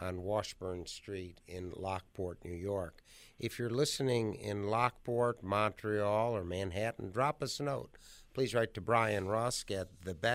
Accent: American